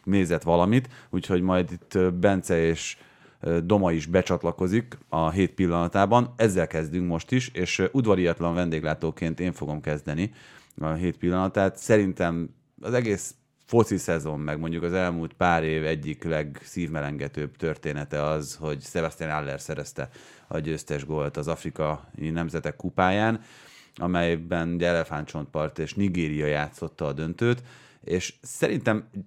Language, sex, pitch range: Hungarian, male, 80-95 Hz